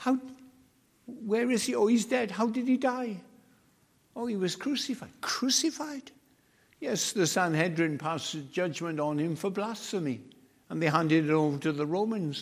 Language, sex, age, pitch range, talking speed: English, male, 60-79, 130-195 Hz, 160 wpm